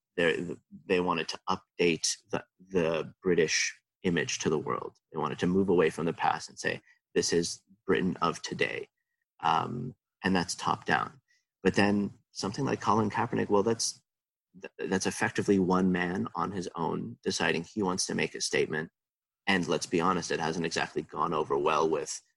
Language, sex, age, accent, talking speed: English, male, 30-49, American, 170 wpm